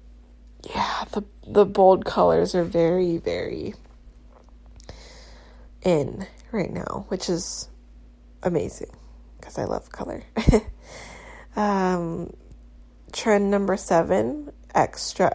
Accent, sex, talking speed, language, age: American, female, 90 wpm, English, 20-39